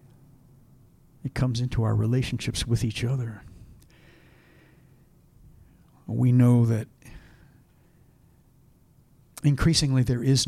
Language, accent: English, American